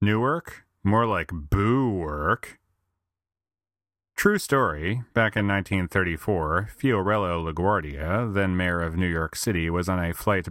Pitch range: 85-115 Hz